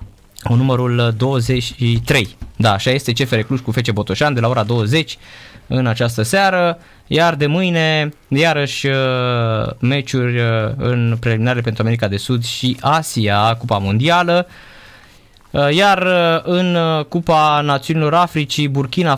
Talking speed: 115 wpm